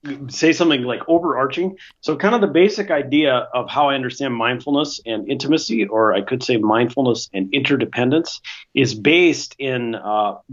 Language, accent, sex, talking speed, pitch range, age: English, American, male, 160 wpm, 115-145 Hz, 40-59